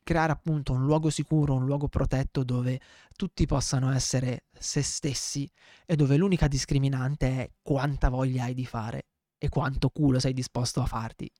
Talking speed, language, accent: 165 wpm, Italian, native